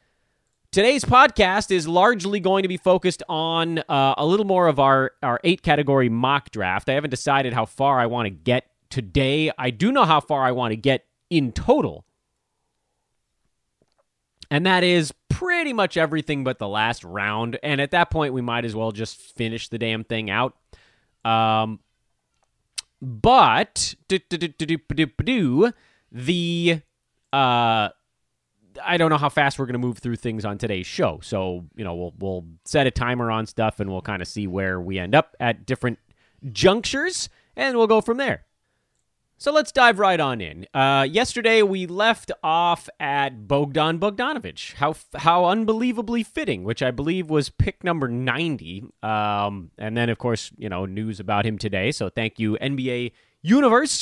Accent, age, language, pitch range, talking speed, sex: American, 30-49, English, 110-175 Hz, 165 wpm, male